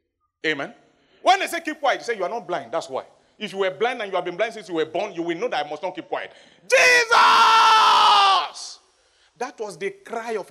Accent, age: Nigerian, 40-59